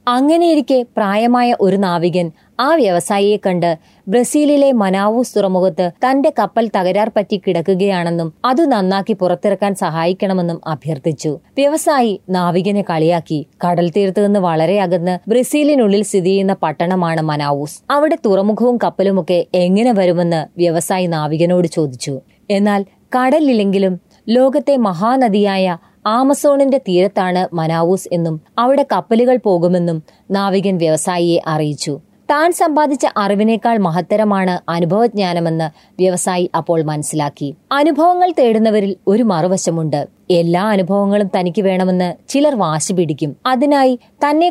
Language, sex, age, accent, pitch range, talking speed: Malayalam, female, 20-39, native, 175-240 Hz, 100 wpm